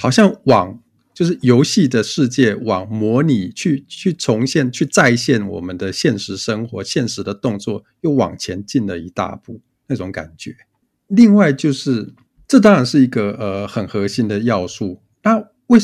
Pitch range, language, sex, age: 95-125 Hz, Chinese, male, 50-69